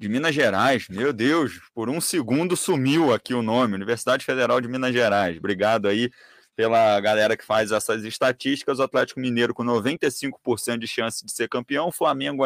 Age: 30-49